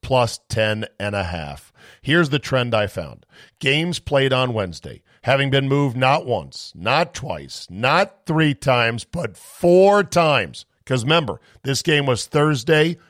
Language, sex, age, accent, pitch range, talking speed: English, male, 50-69, American, 115-155 Hz, 150 wpm